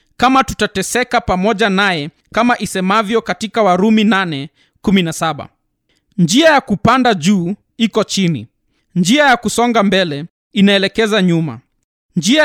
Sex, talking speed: male, 105 wpm